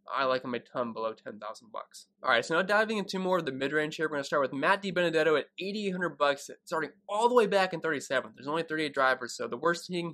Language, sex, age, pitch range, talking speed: English, male, 20-39, 130-170 Hz, 260 wpm